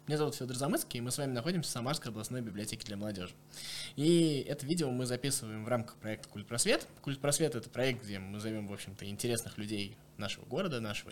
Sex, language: male, Russian